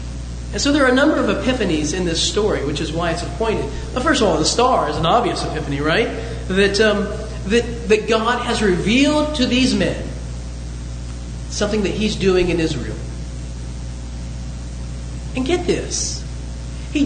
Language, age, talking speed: English, 40-59, 160 wpm